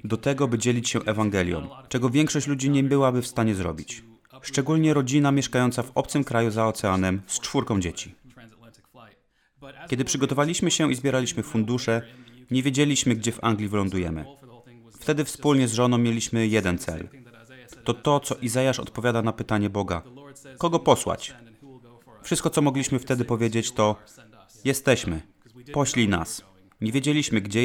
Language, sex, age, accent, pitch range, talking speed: Polish, male, 30-49, native, 110-135 Hz, 145 wpm